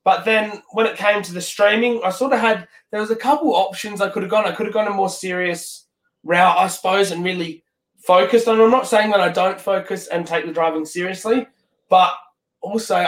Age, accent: 20-39, Australian